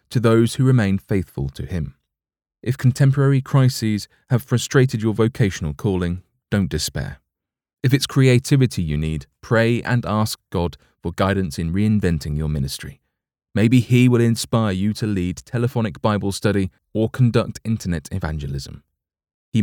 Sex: male